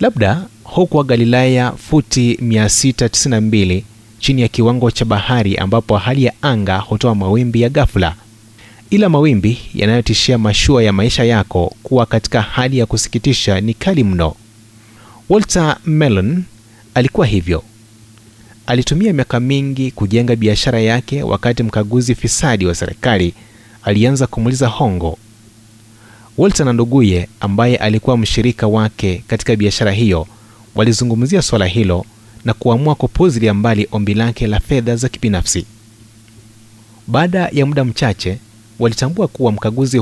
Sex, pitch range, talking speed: male, 110-125 Hz, 120 wpm